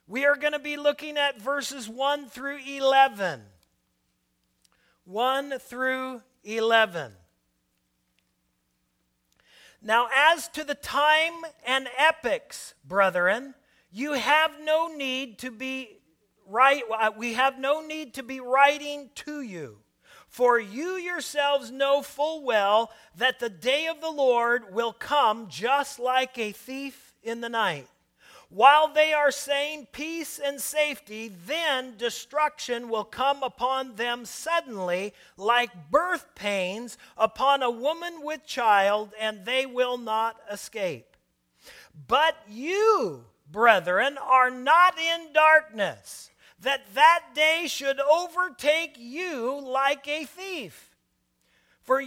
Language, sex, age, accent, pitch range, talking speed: English, male, 40-59, American, 225-295 Hz, 120 wpm